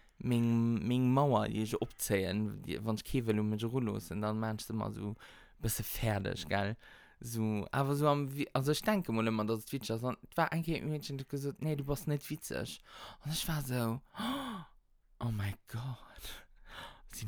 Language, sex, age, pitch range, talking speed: German, male, 20-39, 115-165 Hz, 195 wpm